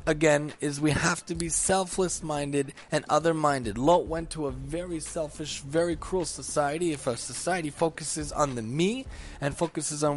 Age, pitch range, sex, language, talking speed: 20-39, 140-165 Hz, male, English, 175 wpm